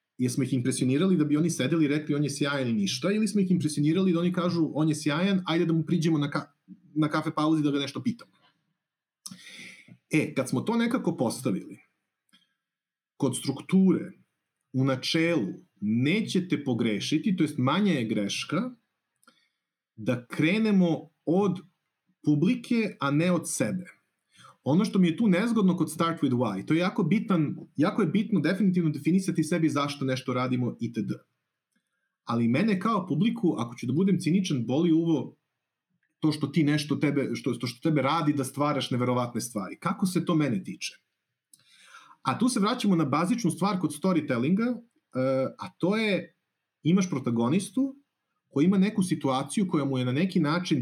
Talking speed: 165 wpm